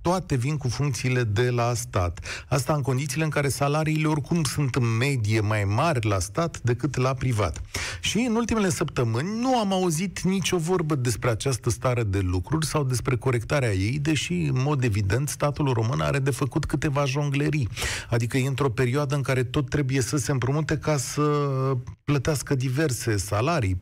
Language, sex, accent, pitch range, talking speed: Romanian, male, native, 115-170 Hz, 175 wpm